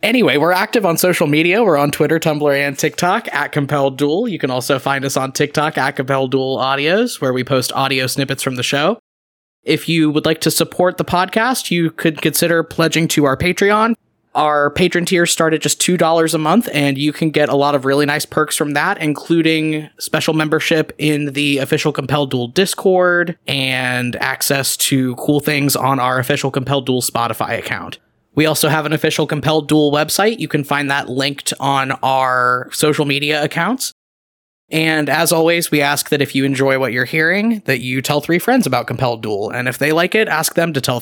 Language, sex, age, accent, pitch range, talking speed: English, male, 20-39, American, 135-160 Hz, 200 wpm